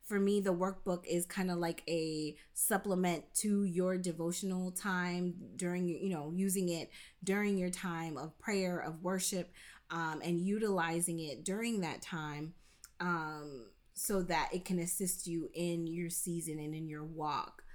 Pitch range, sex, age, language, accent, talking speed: 165-200 Hz, female, 20-39, English, American, 160 wpm